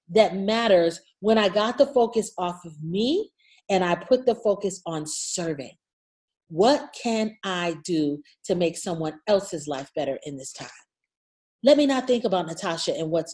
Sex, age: female, 40-59